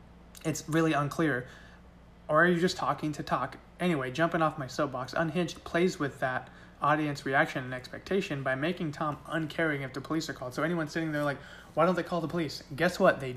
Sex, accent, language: male, American, English